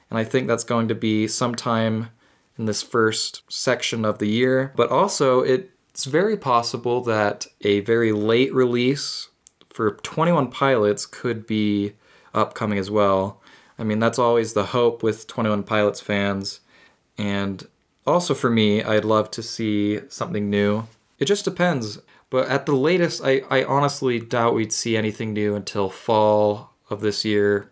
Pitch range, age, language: 105-130 Hz, 20-39, English